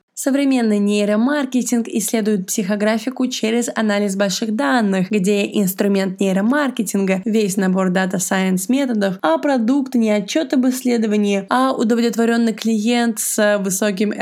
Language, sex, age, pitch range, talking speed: Russian, female, 20-39, 195-235 Hz, 115 wpm